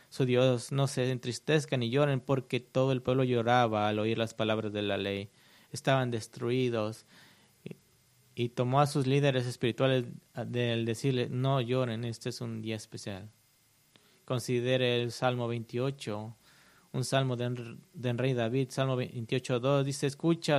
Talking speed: 150 wpm